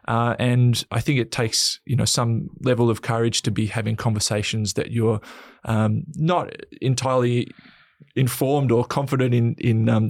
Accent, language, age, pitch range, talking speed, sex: Australian, English, 20-39, 115-140 Hz, 160 wpm, male